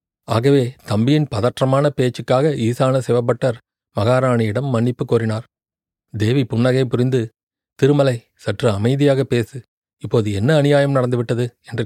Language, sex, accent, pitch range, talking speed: Tamil, male, native, 120-145 Hz, 105 wpm